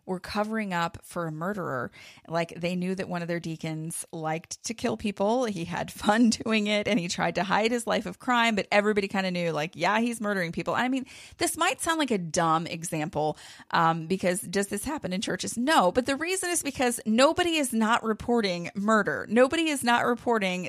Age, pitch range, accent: 30-49, 180-240 Hz, American